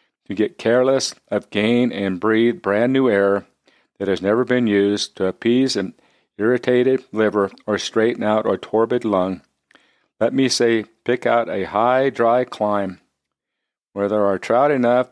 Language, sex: English, male